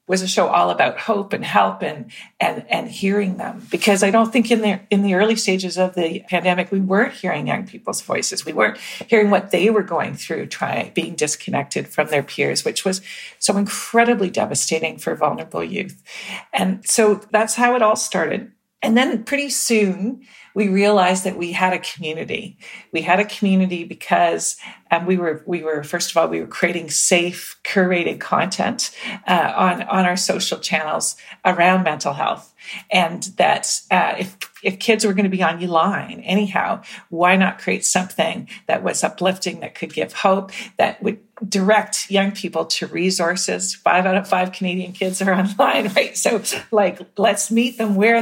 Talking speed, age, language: 185 wpm, 50-69, English